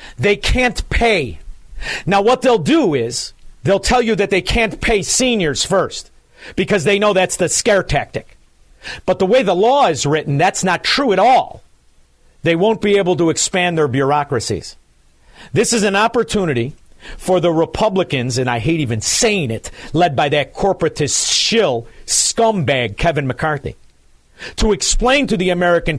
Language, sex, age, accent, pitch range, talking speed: English, male, 50-69, American, 140-205 Hz, 160 wpm